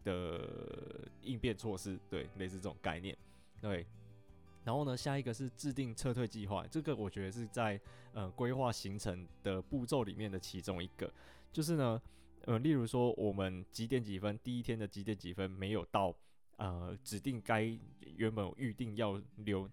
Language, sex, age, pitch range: Chinese, male, 20-39, 95-110 Hz